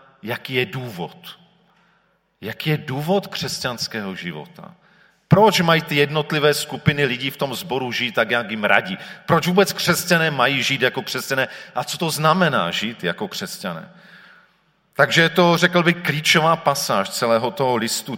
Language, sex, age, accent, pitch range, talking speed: Czech, male, 40-59, native, 115-180 Hz, 150 wpm